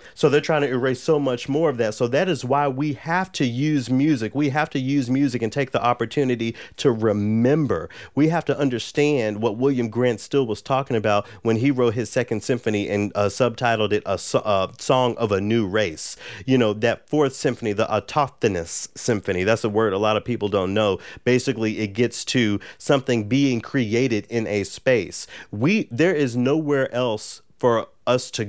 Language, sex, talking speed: English, male, 200 wpm